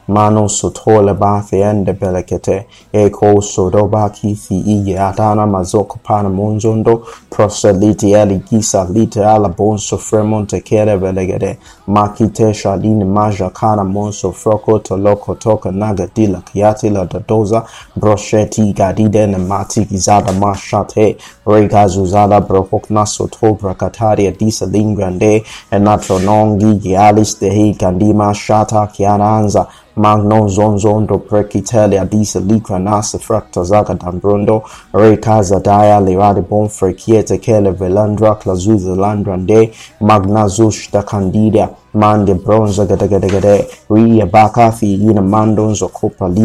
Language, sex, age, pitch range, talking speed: English, male, 20-39, 100-110 Hz, 115 wpm